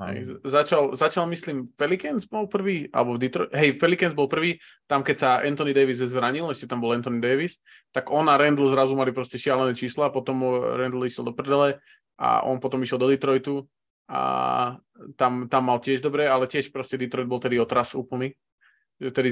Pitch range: 120-140 Hz